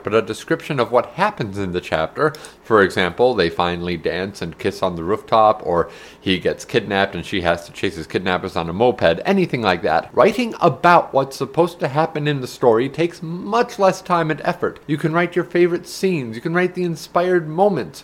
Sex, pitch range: male, 125-170 Hz